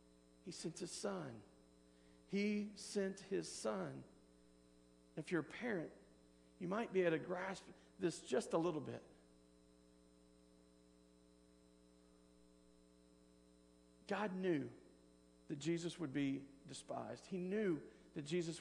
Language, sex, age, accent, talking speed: English, male, 40-59, American, 110 wpm